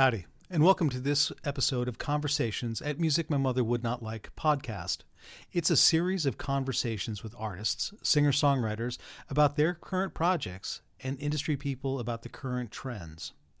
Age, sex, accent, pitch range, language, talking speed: 40-59, male, American, 120-150 Hz, English, 155 wpm